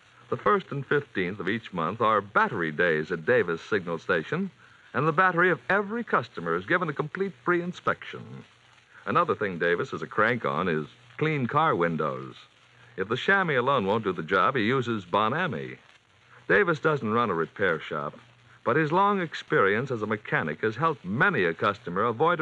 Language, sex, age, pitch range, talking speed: English, male, 60-79, 110-170 Hz, 180 wpm